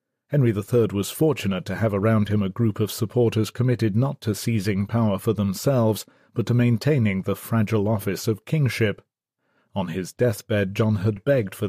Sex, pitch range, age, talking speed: male, 105-130 Hz, 40-59, 175 wpm